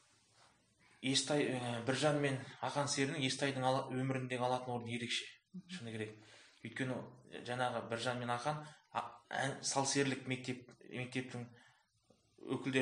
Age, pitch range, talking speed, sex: 20-39, 115-130 Hz, 110 wpm, male